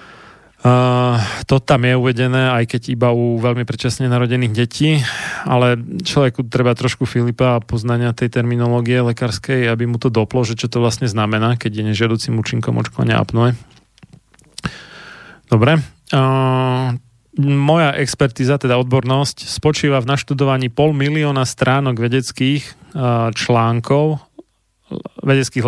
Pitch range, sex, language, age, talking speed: 115-130 Hz, male, Slovak, 30-49, 125 wpm